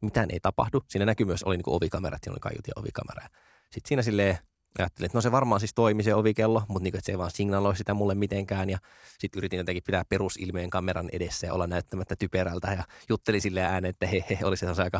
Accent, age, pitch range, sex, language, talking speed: native, 20-39, 90-115 Hz, male, Finnish, 220 wpm